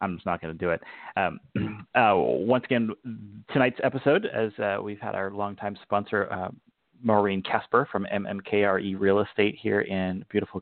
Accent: American